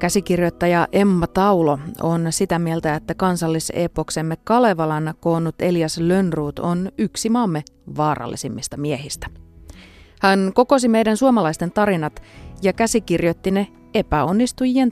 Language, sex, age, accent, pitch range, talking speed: Finnish, female, 30-49, native, 155-205 Hz, 105 wpm